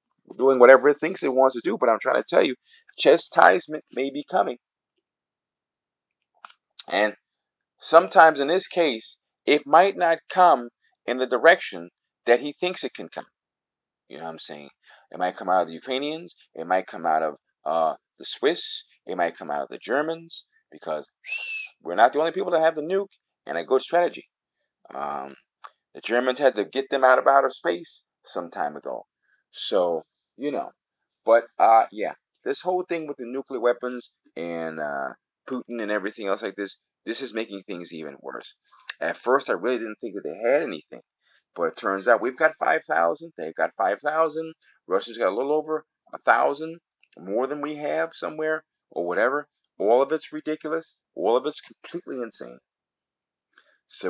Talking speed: 180 wpm